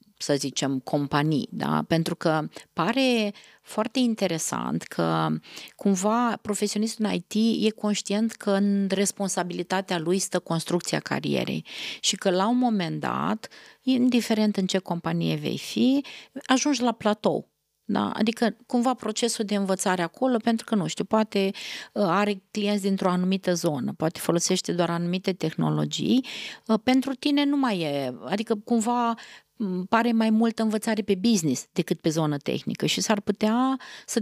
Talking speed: 140 wpm